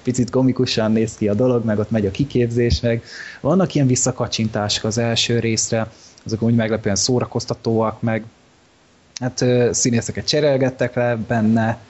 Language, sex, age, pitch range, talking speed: Hungarian, male, 20-39, 110-130 Hz, 140 wpm